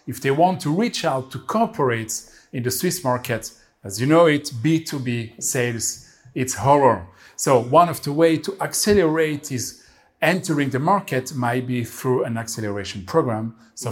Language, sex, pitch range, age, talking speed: English, male, 120-160 Hz, 40-59, 165 wpm